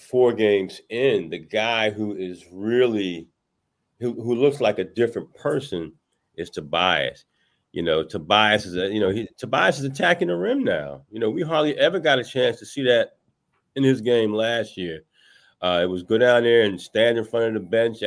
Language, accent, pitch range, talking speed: English, American, 105-150 Hz, 200 wpm